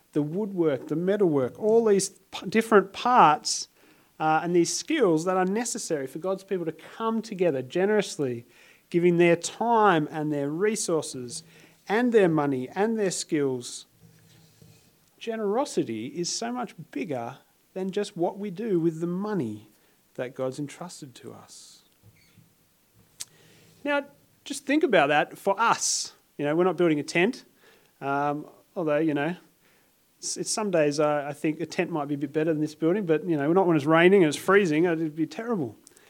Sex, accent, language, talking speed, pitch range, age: male, Australian, English, 165 wpm, 155-225 Hz, 40-59